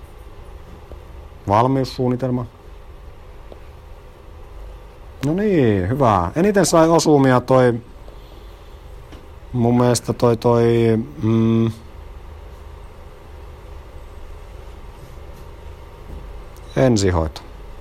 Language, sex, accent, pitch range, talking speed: Finnish, male, native, 85-125 Hz, 45 wpm